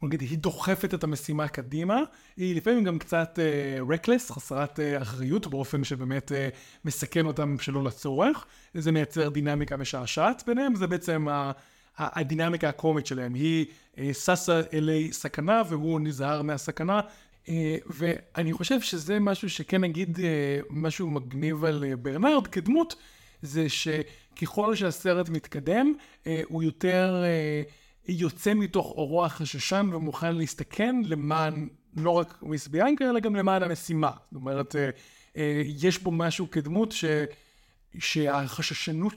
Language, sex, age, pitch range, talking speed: Hebrew, male, 30-49, 145-180 Hz, 135 wpm